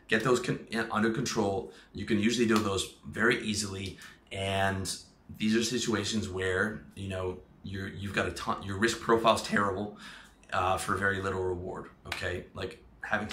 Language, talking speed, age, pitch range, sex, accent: English, 160 wpm, 30-49, 95-115 Hz, male, American